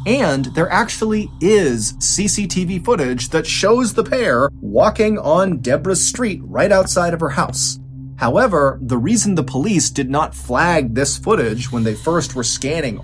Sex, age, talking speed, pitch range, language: male, 30-49, 155 wpm, 130-195 Hz, English